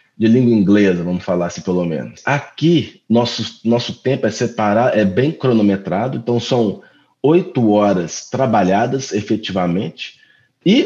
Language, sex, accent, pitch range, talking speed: English, male, Brazilian, 105-150 Hz, 135 wpm